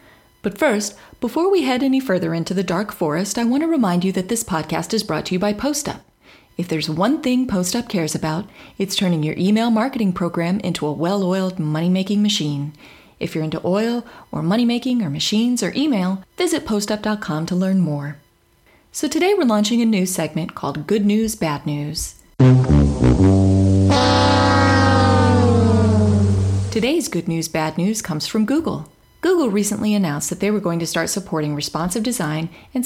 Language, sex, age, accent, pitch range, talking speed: English, female, 30-49, American, 155-225 Hz, 165 wpm